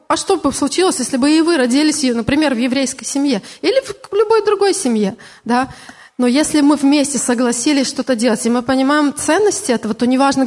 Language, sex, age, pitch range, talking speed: Russian, female, 20-39, 235-305 Hz, 195 wpm